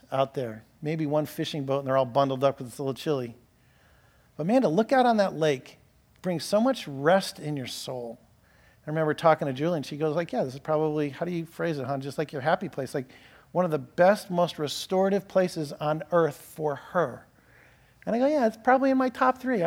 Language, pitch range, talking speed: English, 145-220 Hz, 235 wpm